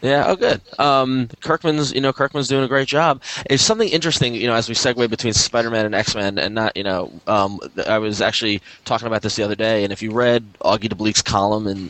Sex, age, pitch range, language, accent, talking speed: male, 20-39, 100-115 Hz, English, American, 225 wpm